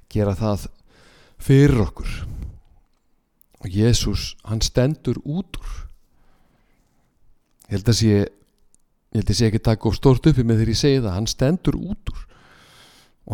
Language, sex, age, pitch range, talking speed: English, male, 50-69, 95-125 Hz, 110 wpm